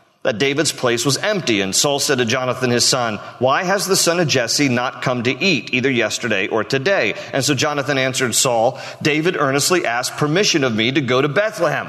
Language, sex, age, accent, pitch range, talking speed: English, male, 40-59, American, 125-205 Hz, 205 wpm